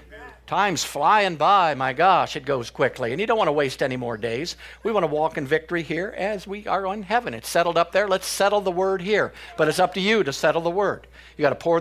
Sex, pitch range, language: male, 135-185 Hz, English